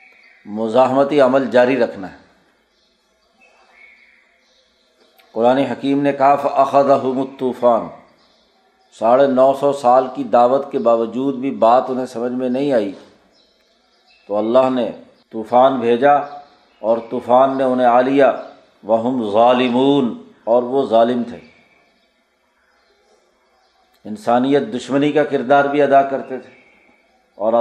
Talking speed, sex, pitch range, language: 115 wpm, male, 125-140 Hz, Urdu